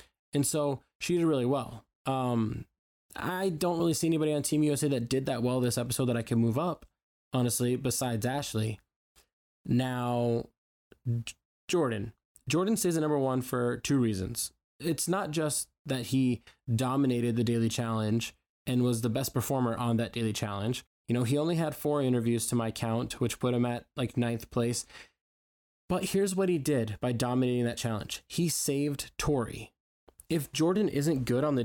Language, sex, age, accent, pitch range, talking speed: English, male, 20-39, American, 115-150 Hz, 175 wpm